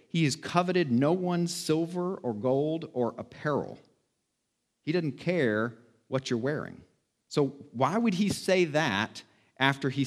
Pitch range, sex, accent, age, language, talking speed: 120-155 Hz, male, American, 40-59, English, 145 wpm